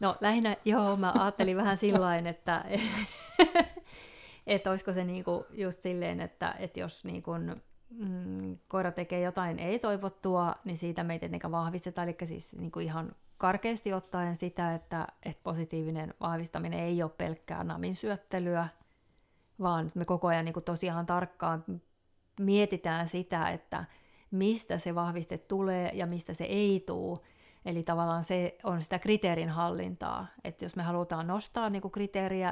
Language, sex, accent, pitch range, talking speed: Finnish, female, native, 165-195 Hz, 130 wpm